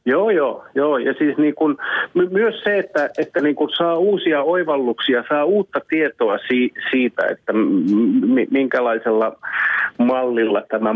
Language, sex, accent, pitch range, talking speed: Finnish, male, native, 125-160 Hz, 150 wpm